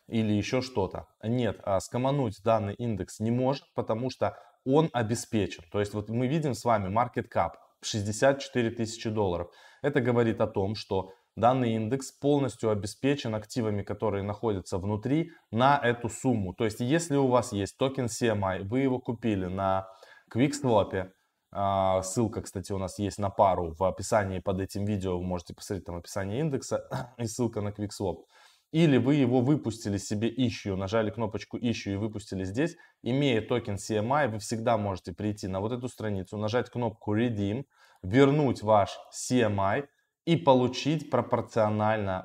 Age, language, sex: 20-39, Russian, male